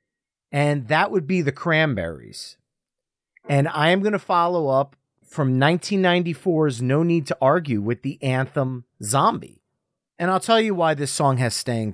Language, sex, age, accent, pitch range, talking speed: English, male, 30-49, American, 115-160 Hz, 160 wpm